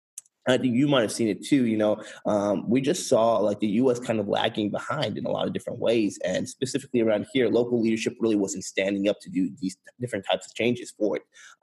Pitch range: 105-125 Hz